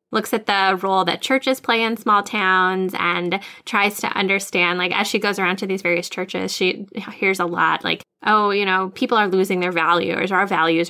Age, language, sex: 10-29, English, female